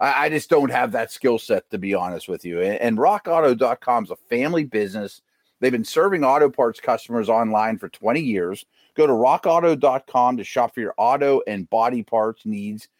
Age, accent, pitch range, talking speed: 40-59, American, 115-155 Hz, 185 wpm